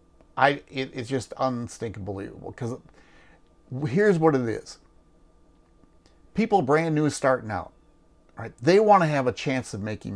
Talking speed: 150 wpm